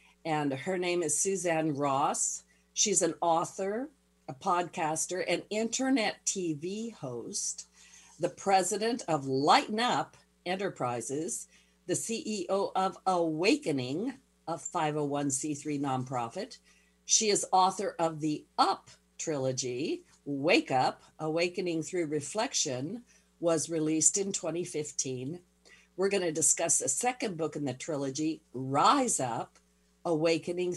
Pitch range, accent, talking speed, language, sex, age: 140-185 Hz, American, 110 wpm, English, female, 50-69